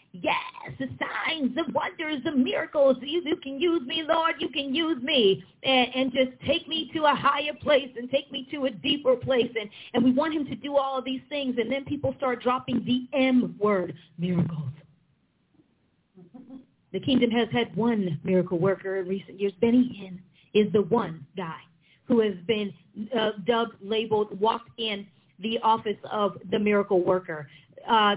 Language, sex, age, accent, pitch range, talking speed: English, female, 40-59, American, 200-265 Hz, 170 wpm